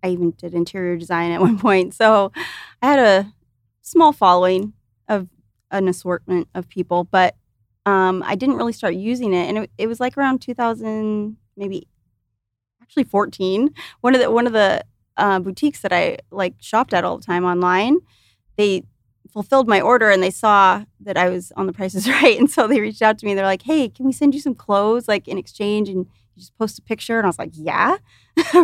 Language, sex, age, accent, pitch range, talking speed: English, female, 20-39, American, 180-225 Hz, 205 wpm